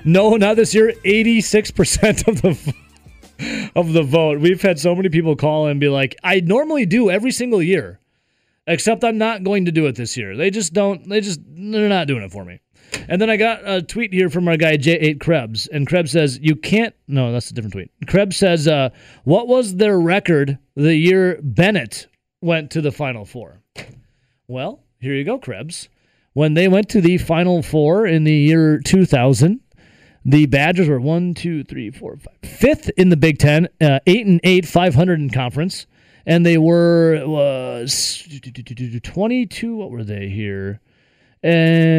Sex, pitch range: male, 135-185 Hz